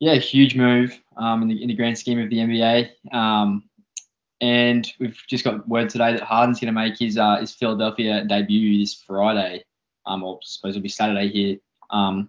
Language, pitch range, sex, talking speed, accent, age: English, 105-125 Hz, male, 200 wpm, Australian, 20-39